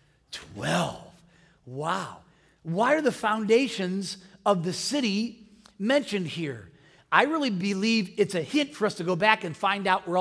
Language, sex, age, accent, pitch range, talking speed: English, male, 40-59, American, 180-245 Hz, 155 wpm